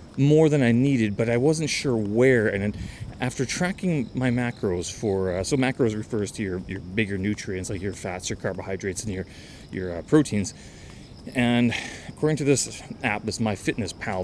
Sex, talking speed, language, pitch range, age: male, 175 wpm, English, 100-130 Hz, 30-49